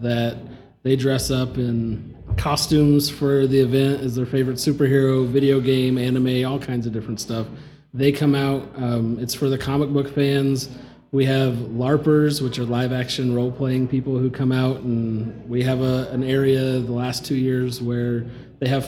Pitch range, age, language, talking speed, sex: 120-140 Hz, 30-49, English, 175 wpm, male